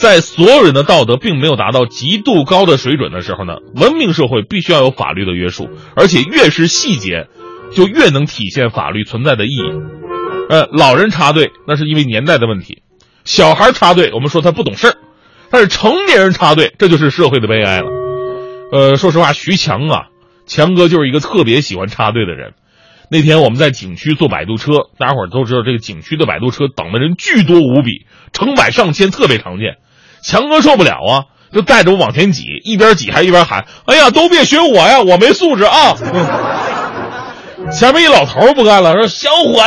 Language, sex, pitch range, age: Chinese, male, 125-190 Hz, 30-49